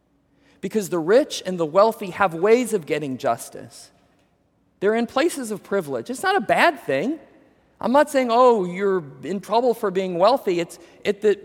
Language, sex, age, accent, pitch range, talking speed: English, male, 40-59, American, 185-230 Hz, 175 wpm